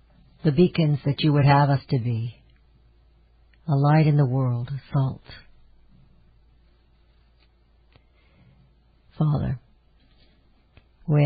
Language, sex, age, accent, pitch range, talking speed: English, female, 60-79, American, 120-150 Hz, 90 wpm